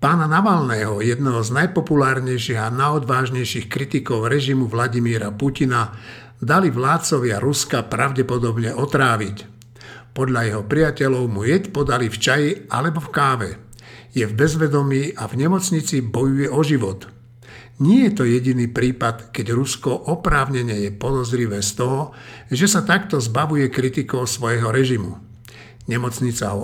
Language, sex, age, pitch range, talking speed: Slovak, male, 60-79, 120-150 Hz, 130 wpm